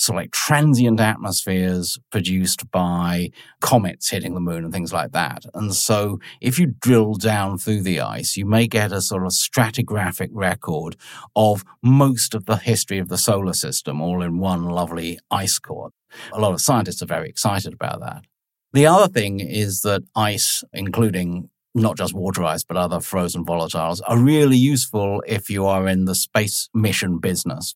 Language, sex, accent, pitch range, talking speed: English, male, British, 90-115 Hz, 175 wpm